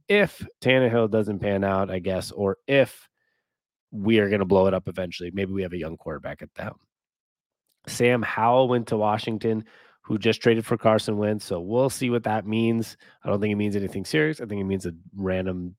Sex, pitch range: male, 95-120 Hz